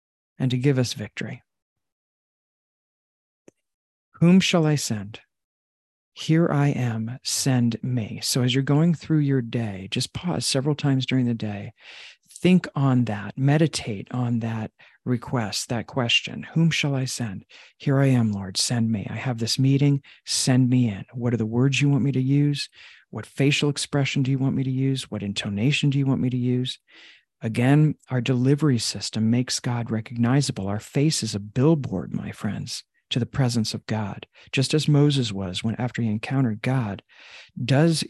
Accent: American